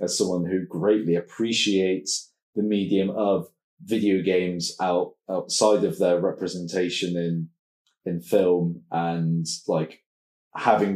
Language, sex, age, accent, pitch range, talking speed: English, male, 20-39, British, 95-115 Hz, 115 wpm